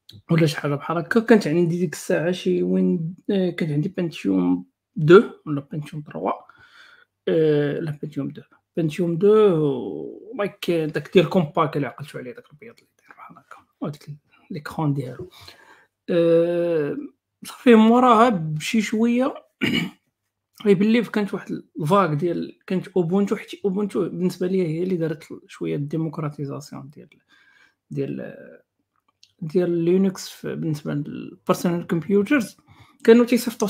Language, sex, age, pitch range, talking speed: Arabic, male, 50-69, 150-200 Hz, 85 wpm